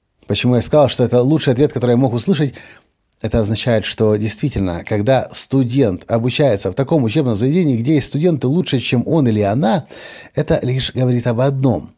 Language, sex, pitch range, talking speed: Russian, male, 120-165 Hz, 175 wpm